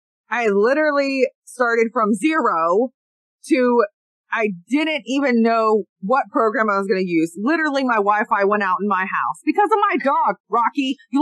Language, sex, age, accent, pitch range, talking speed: English, female, 20-39, American, 200-275 Hz, 165 wpm